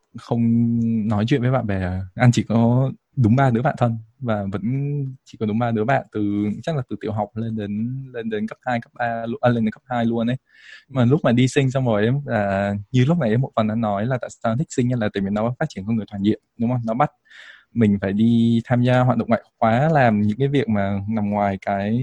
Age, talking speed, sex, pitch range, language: 20-39, 260 wpm, male, 105-130 Hz, Vietnamese